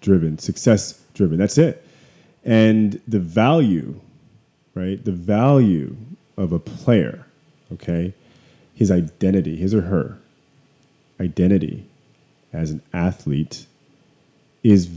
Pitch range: 90-110 Hz